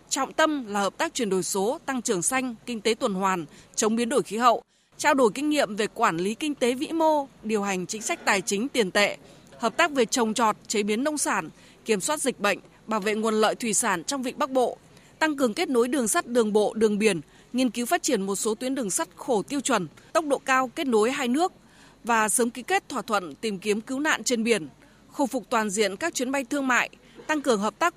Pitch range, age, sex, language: 215-290 Hz, 20-39, female, Vietnamese